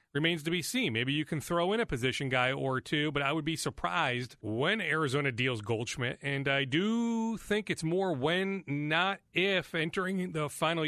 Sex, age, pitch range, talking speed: male, 40-59, 135-180 Hz, 195 wpm